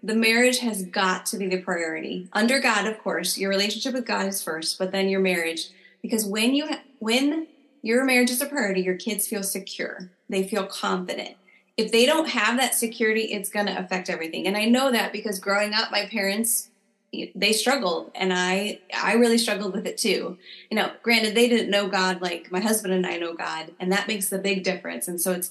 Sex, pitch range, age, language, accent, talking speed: female, 195-245 Hz, 20-39, English, American, 215 wpm